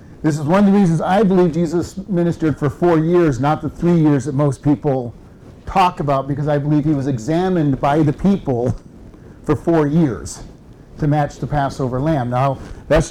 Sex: male